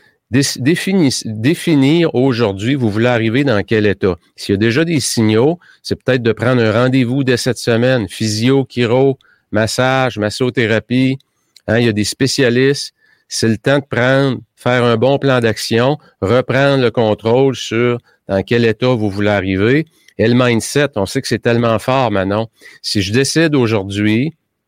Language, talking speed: French, 160 wpm